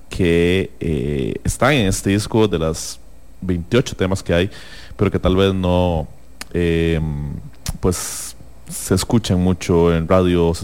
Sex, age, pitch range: male, 30-49, 80-95 Hz